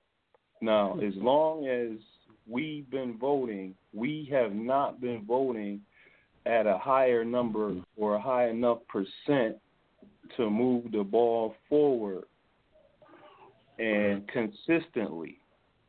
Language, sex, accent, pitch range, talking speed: English, male, American, 110-130 Hz, 105 wpm